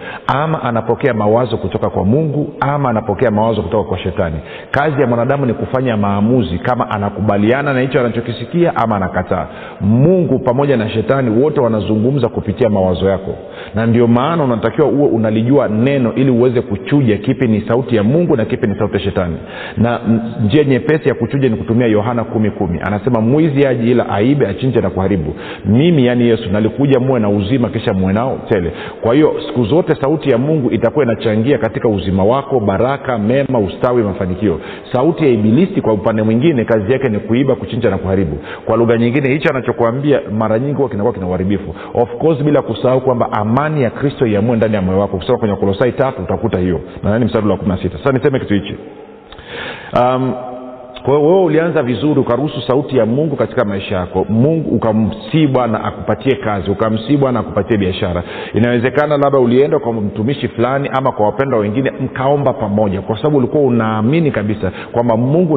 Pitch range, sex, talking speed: 105-130 Hz, male, 175 wpm